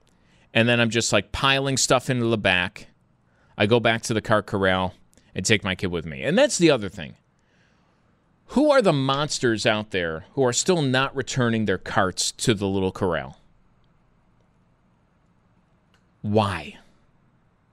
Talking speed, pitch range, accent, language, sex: 155 wpm, 105-165 Hz, American, English, male